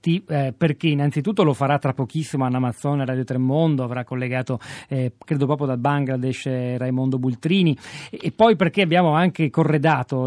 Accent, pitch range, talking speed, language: native, 130-155 Hz, 160 wpm, Italian